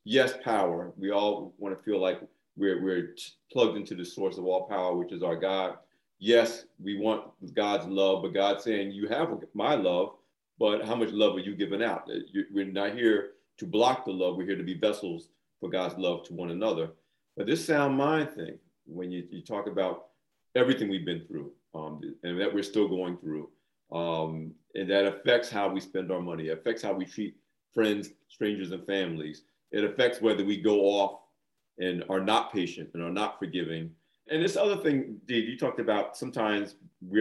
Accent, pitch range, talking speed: American, 90-110 Hz, 200 wpm